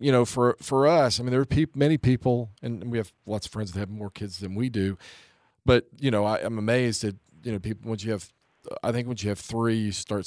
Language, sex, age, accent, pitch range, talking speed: English, male, 40-59, American, 120-150 Hz, 255 wpm